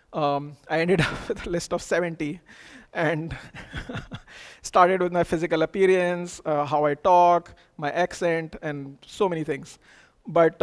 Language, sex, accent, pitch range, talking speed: English, male, Indian, 145-170 Hz, 145 wpm